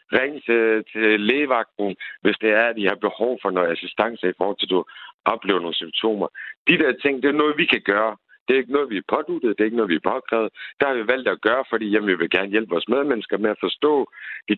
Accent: native